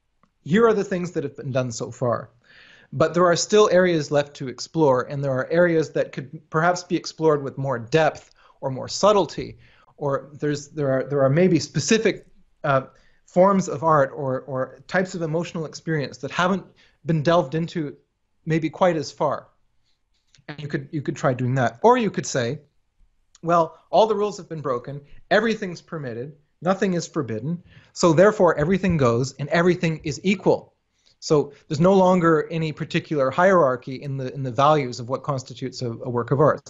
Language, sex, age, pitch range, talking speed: English, male, 30-49, 130-170 Hz, 185 wpm